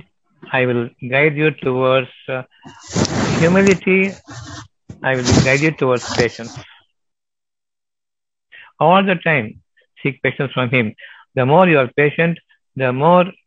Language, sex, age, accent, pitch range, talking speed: Tamil, male, 60-79, native, 125-160 Hz, 120 wpm